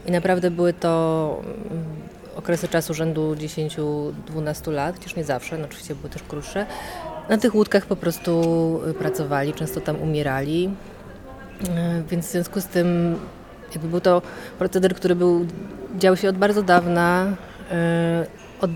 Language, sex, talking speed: Polish, female, 140 wpm